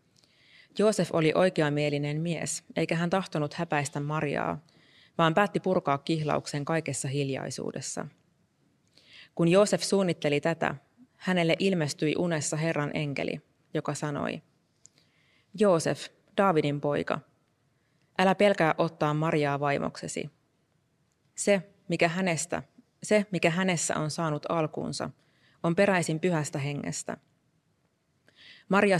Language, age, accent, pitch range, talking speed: Finnish, 20-39, native, 145-175 Hz, 100 wpm